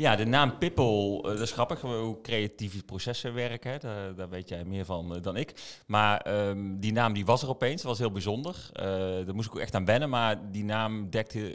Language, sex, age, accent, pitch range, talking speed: Dutch, male, 30-49, Dutch, 90-110 Hz, 225 wpm